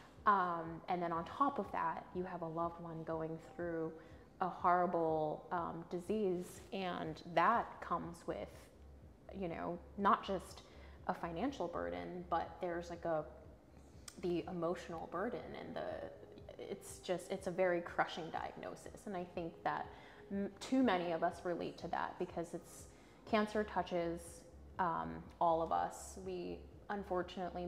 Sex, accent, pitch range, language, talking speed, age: female, American, 165-185 Hz, English, 145 wpm, 20-39